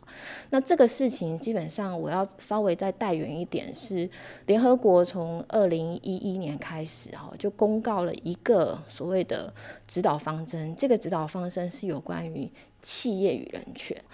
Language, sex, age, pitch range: Chinese, female, 20-39, 175-220 Hz